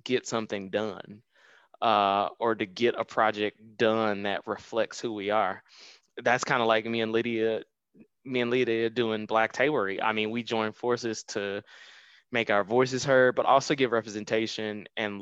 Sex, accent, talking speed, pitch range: male, American, 170 wpm, 100-115 Hz